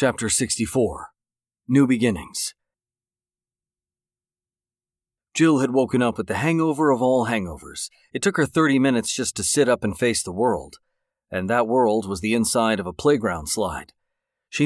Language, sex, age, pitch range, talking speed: English, male, 40-59, 105-125 Hz, 155 wpm